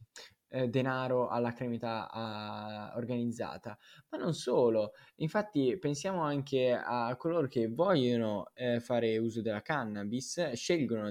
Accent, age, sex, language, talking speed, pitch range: native, 10-29, male, Italian, 105 wpm, 115-150 Hz